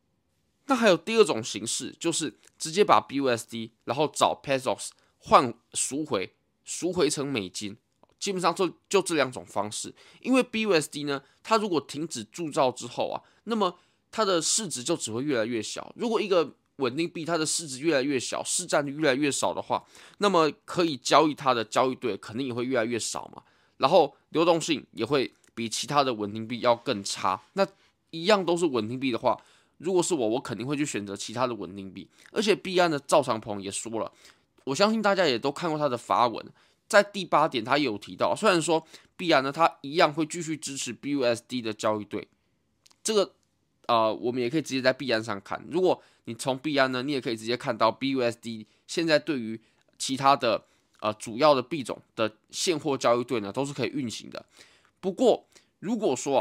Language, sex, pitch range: Chinese, male, 115-170 Hz